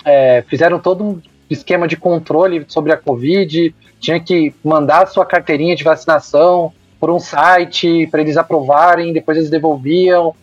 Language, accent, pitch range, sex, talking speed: Portuguese, Brazilian, 150-190 Hz, male, 150 wpm